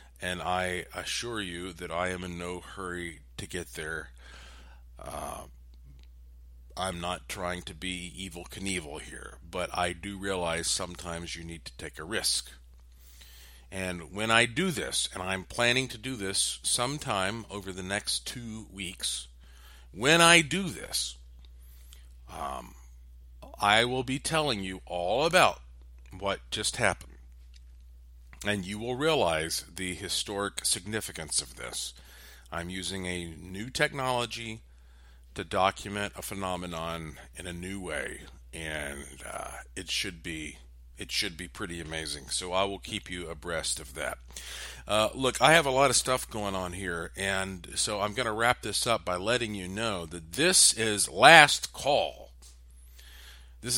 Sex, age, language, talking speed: male, 50-69, English, 150 wpm